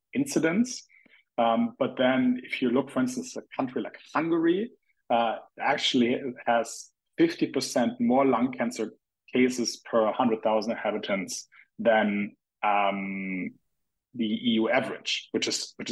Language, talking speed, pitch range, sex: English, 130 wpm, 110-160 Hz, male